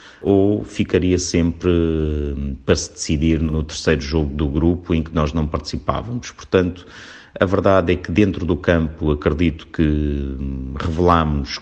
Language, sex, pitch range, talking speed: Portuguese, male, 80-90 Hz, 140 wpm